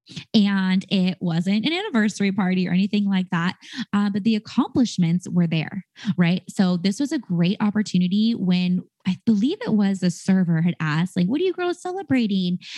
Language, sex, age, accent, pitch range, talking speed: English, female, 20-39, American, 185-230 Hz, 180 wpm